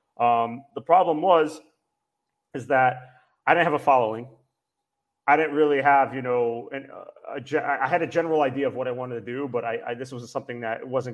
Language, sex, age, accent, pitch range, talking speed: English, male, 30-49, American, 110-130 Hz, 215 wpm